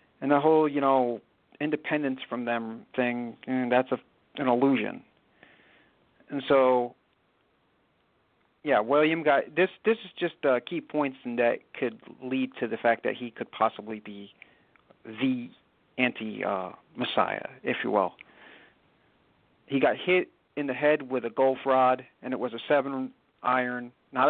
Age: 50-69